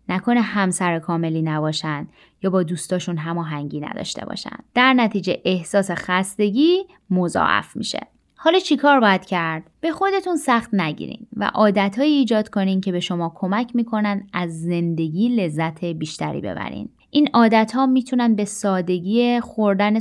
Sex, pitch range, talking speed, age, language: female, 175-230 Hz, 135 wpm, 20-39, Persian